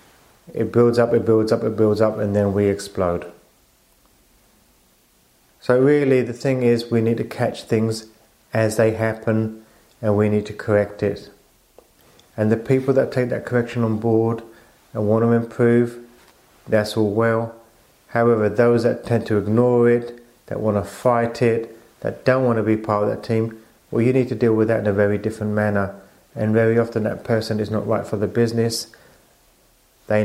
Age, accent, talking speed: 30-49, British, 185 wpm